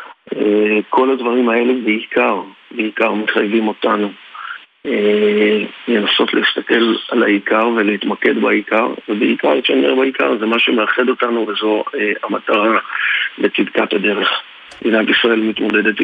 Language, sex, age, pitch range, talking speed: Hebrew, male, 50-69, 105-115 Hz, 105 wpm